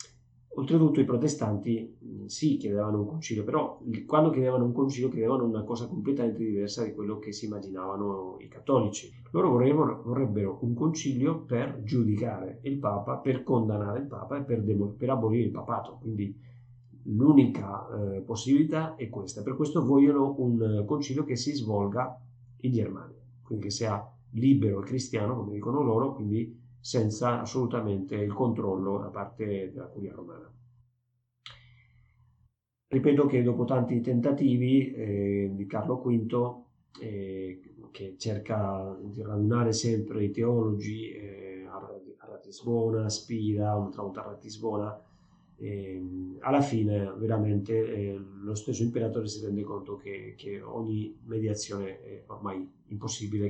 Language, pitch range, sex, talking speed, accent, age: Italian, 105-125 Hz, male, 135 wpm, native, 30-49